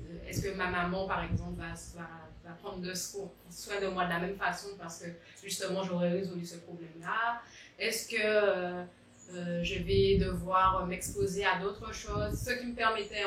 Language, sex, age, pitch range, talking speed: French, female, 30-49, 175-205 Hz, 180 wpm